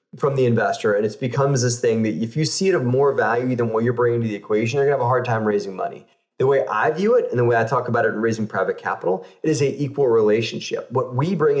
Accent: American